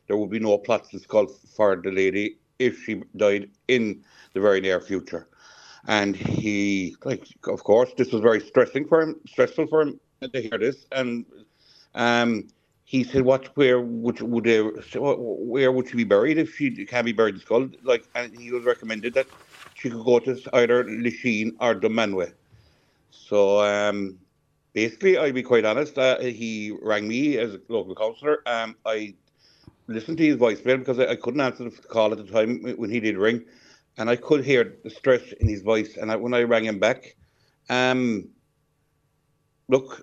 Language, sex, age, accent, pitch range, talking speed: English, male, 60-79, Irish, 110-130 Hz, 185 wpm